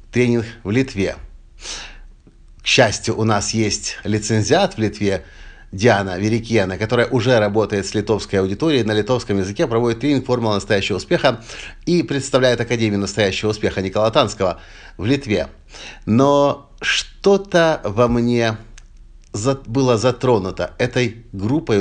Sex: male